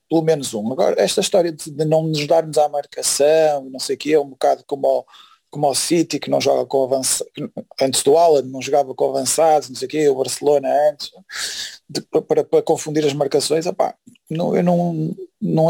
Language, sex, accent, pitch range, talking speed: Portuguese, male, Portuguese, 145-175 Hz, 205 wpm